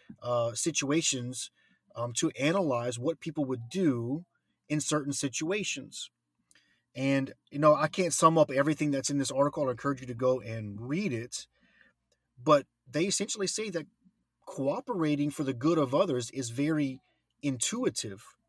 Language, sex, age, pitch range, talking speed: English, male, 30-49, 120-150 Hz, 150 wpm